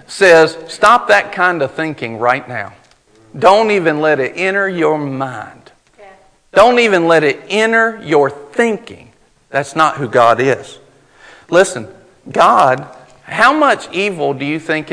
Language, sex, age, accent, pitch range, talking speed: English, male, 50-69, American, 140-205 Hz, 140 wpm